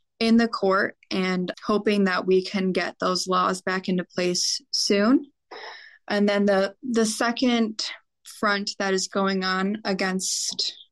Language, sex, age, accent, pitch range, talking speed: English, female, 20-39, American, 190-220 Hz, 145 wpm